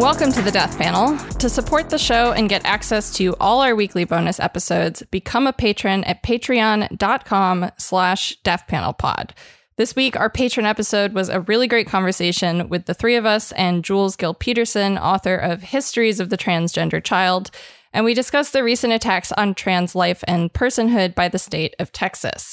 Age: 20-39